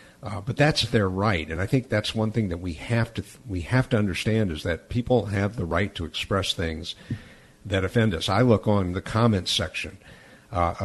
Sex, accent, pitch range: male, American, 85-105 Hz